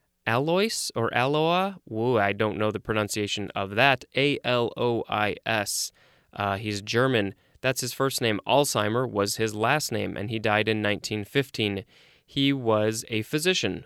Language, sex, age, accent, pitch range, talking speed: English, male, 20-39, American, 110-135 Hz, 135 wpm